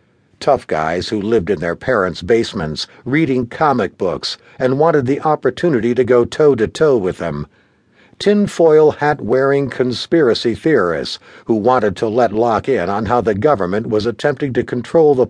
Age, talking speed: 60-79, 155 wpm